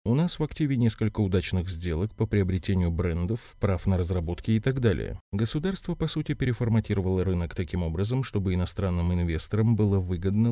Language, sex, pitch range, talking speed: Russian, male, 90-115 Hz, 160 wpm